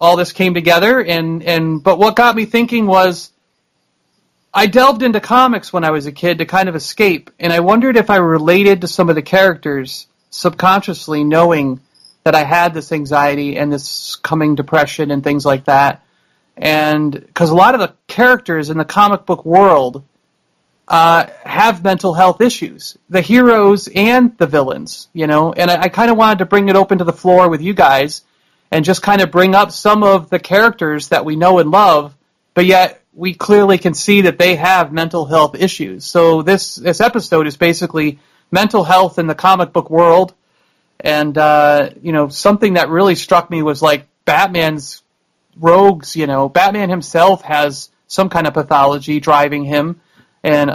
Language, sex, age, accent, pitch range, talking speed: English, male, 30-49, American, 150-190 Hz, 185 wpm